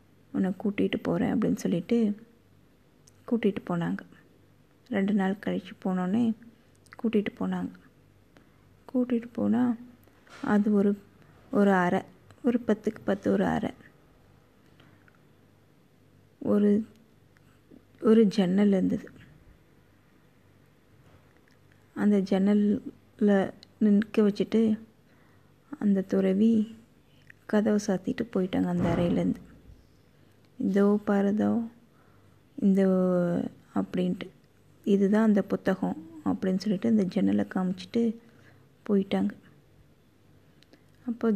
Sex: female